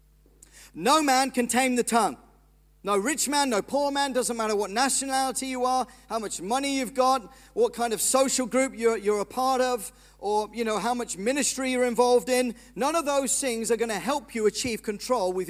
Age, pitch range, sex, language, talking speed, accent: 40-59, 205-260 Hz, male, English, 210 wpm, British